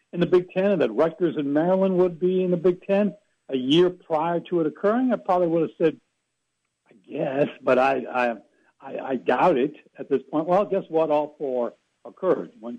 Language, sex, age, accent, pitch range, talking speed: English, male, 60-79, American, 145-180 Hz, 205 wpm